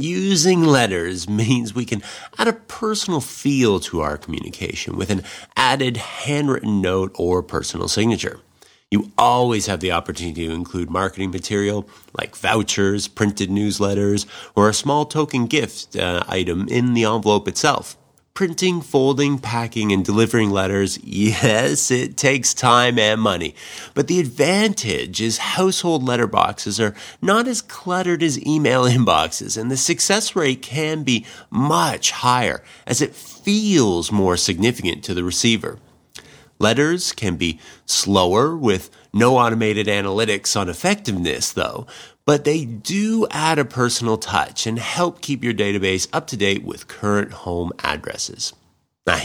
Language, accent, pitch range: English, American, 100-145 Hz